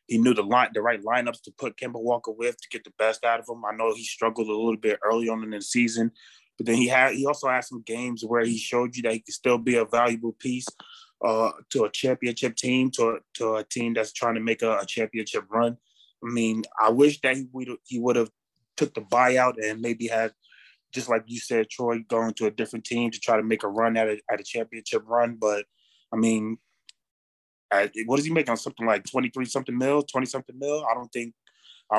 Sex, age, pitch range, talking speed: male, 20-39, 110-120 Hz, 245 wpm